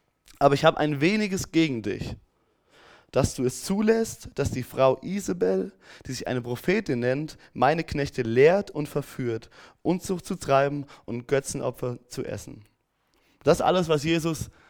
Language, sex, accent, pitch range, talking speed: German, male, German, 125-155 Hz, 150 wpm